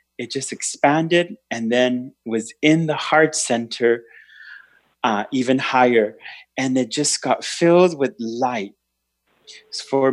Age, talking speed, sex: 30-49, 130 wpm, male